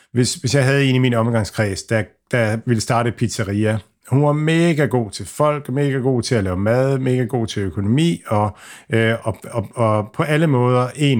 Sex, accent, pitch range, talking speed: male, native, 105-130 Hz, 195 wpm